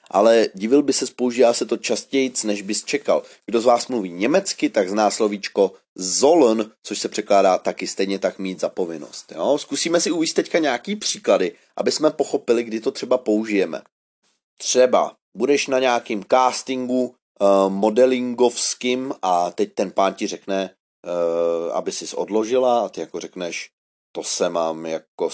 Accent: native